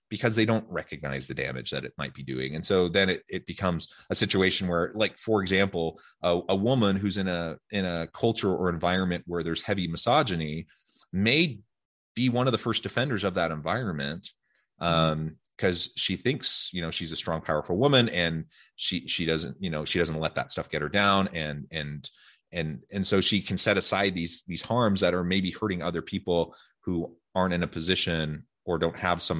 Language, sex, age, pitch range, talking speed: English, male, 30-49, 80-100 Hz, 205 wpm